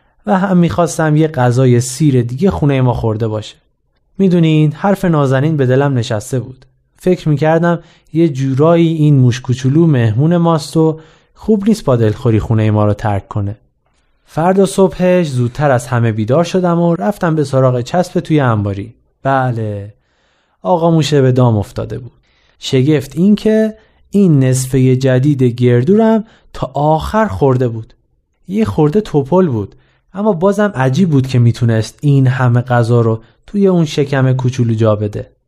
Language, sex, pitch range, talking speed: Persian, male, 120-170 Hz, 150 wpm